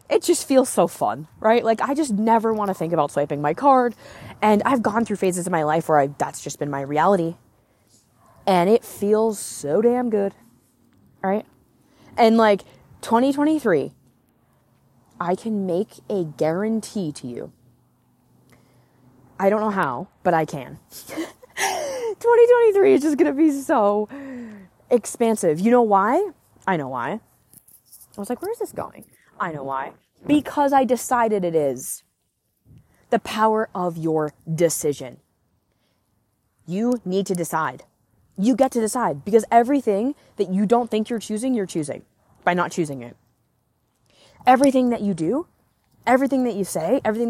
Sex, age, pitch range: female, 20-39, 155-245 Hz